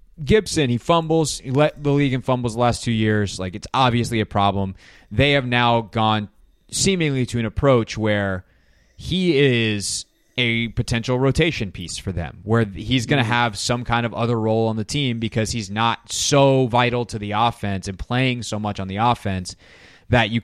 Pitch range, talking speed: 100-125 Hz, 190 wpm